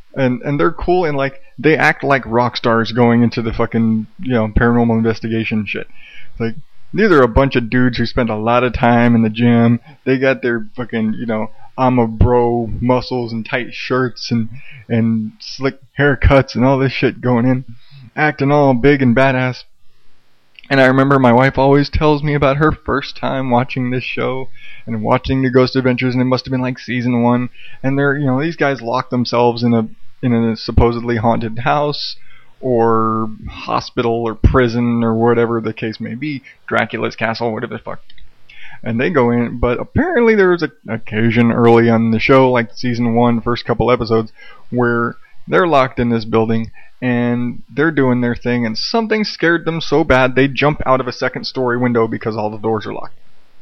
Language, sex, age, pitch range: English, male, 20-39, 115-135 Hz